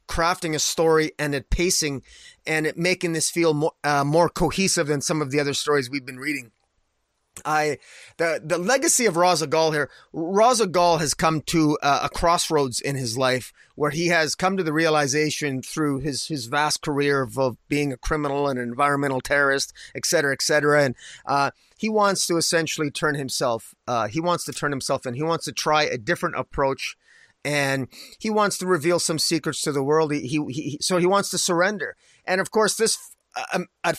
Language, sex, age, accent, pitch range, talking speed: English, male, 30-49, American, 145-175 Hz, 200 wpm